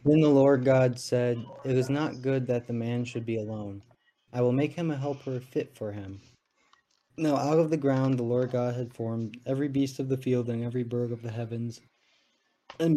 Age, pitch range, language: 20-39, 115-135 Hz, English